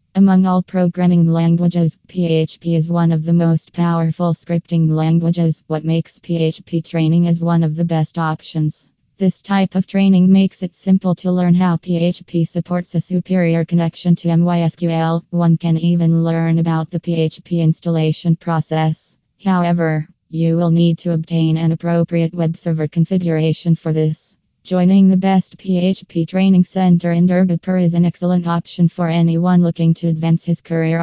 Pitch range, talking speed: 165-175 Hz, 155 wpm